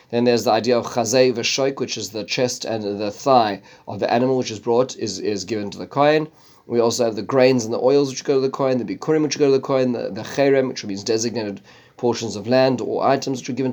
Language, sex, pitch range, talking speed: English, male, 110-130 Hz, 260 wpm